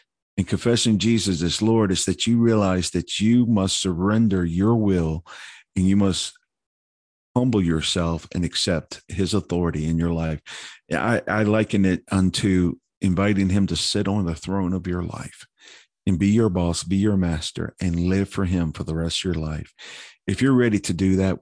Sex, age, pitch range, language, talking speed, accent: male, 50-69, 85-100 Hz, English, 180 wpm, American